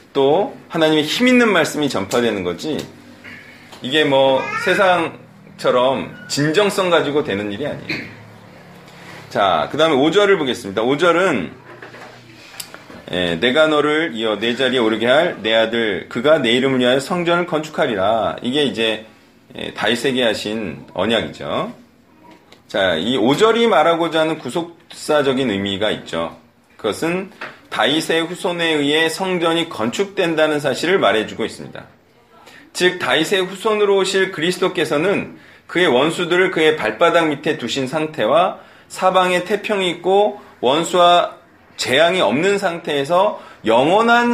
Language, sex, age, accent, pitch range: Korean, male, 30-49, native, 135-200 Hz